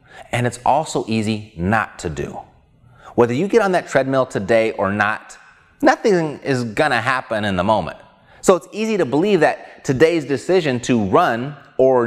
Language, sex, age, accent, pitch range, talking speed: English, male, 30-49, American, 95-145 Hz, 175 wpm